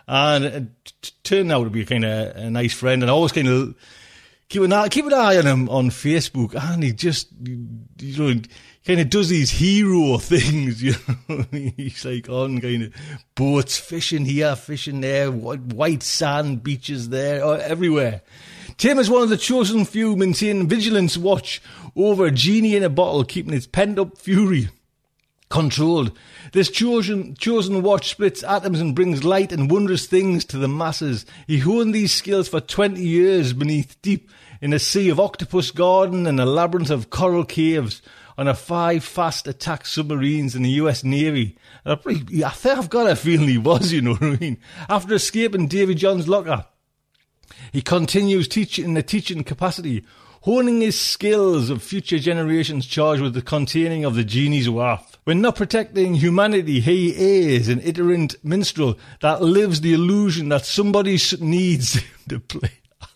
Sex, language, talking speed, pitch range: male, English, 170 wpm, 135-190 Hz